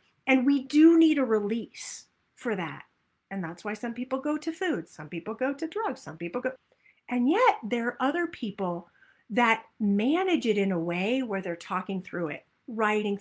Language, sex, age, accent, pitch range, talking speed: English, female, 40-59, American, 200-260 Hz, 190 wpm